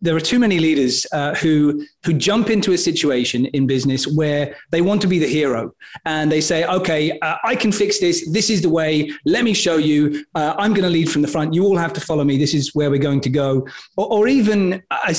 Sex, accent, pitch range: male, British, 150-180 Hz